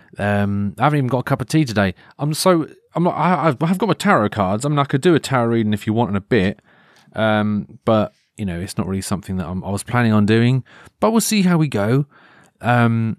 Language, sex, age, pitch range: English, male, 30-49, 105-140 Hz